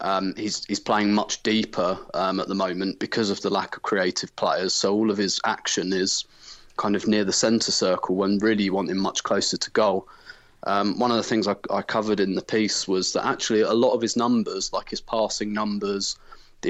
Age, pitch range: 30-49, 95-110 Hz